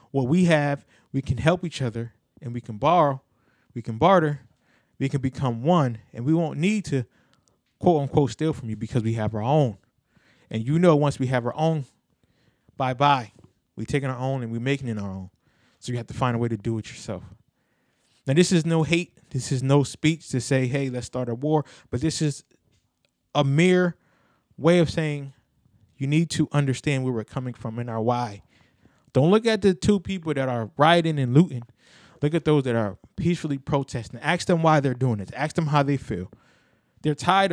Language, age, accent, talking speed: English, 20-39, American, 205 wpm